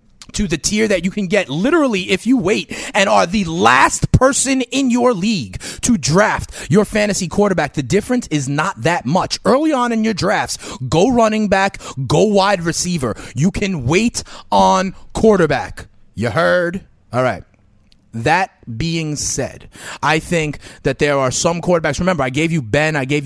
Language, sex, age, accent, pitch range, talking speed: English, male, 30-49, American, 140-200 Hz, 175 wpm